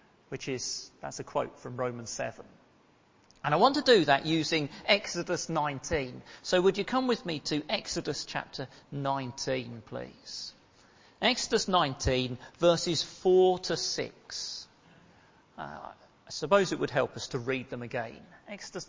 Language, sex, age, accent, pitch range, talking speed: English, male, 40-59, British, 140-210 Hz, 145 wpm